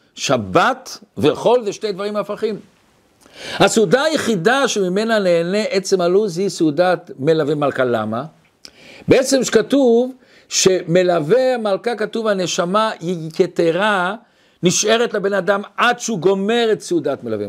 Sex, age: male, 60-79